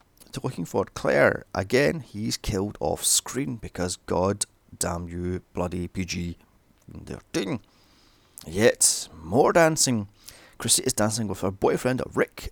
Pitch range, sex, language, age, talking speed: 95-130 Hz, male, English, 30-49, 110 wpm